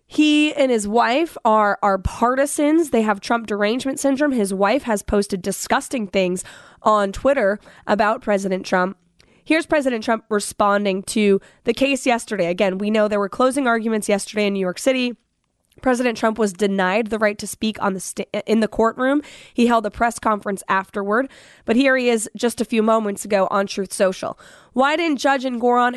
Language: English